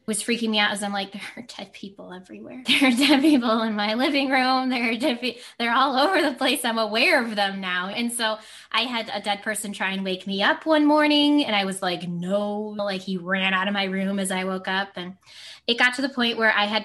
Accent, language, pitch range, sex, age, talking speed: American, English, 195-250 Hz, female, 20-39, 255 wpm